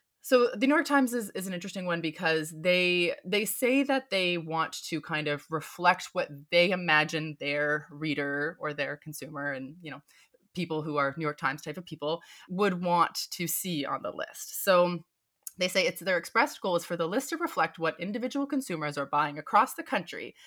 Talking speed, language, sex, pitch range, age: 200 wpm, English, female, 155-220 Hz, 20-39